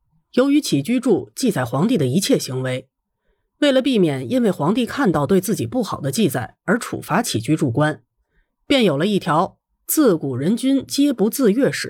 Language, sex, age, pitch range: Chinese, female, 30-49, 145-250 Hz